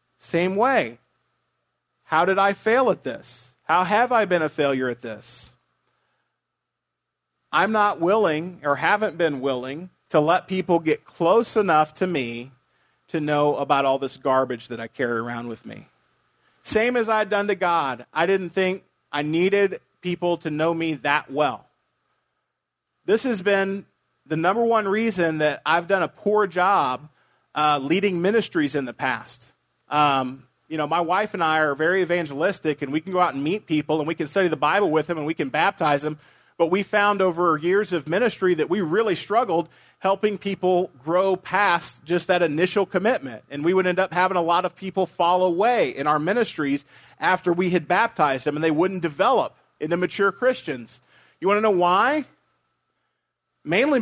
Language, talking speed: English, 180 wpm